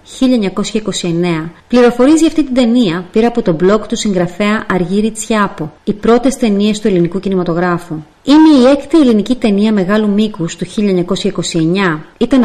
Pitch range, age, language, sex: 180-235 Hz, 30-49, English, female